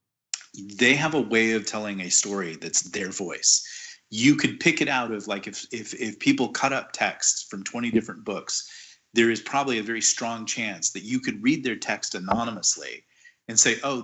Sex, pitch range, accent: male, 105-130 Hz, American